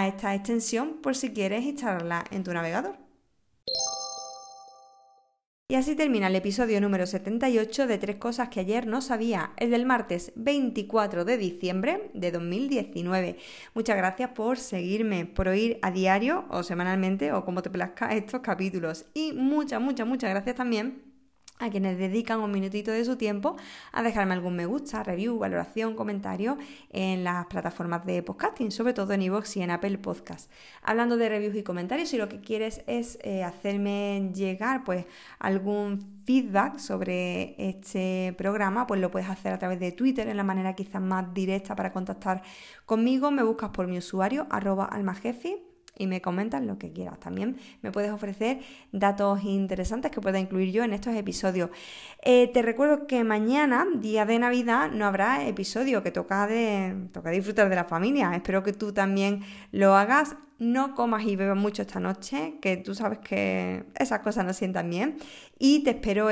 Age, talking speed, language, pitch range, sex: 20-39, 165 wpm, Spanish, 190-240 Hz, female